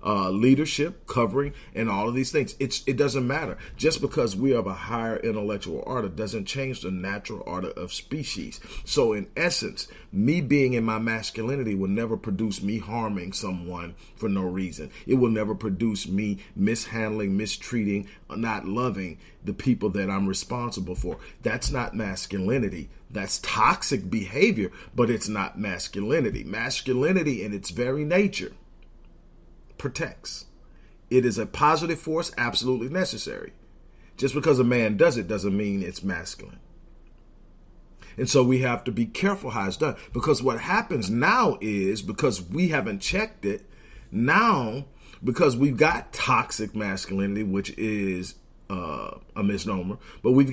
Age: 40-59